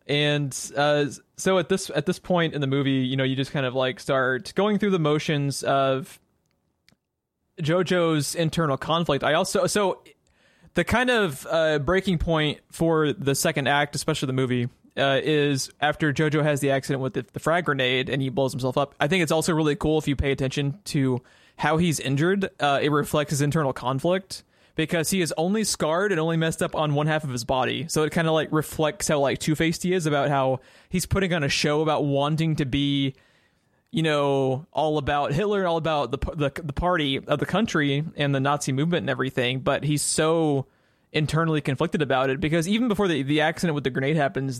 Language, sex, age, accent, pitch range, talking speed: English, male, 20-39, American, 140-165 Hz, 210 wpm